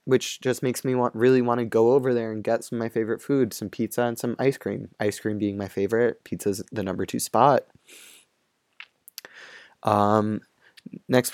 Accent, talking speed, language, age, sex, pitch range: American, 190 wpm, English, 20-39, male, 110-130 Hz